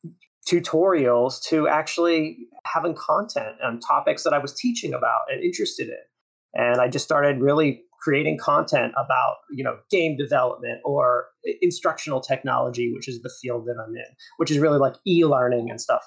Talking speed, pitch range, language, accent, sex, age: 165 wpm, 130-175 Hz, English, American, male, 30-49